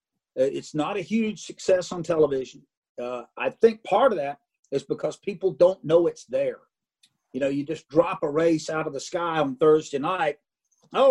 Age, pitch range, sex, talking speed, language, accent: 50-69, 155-225 Hz, male, 190 wpm, English, American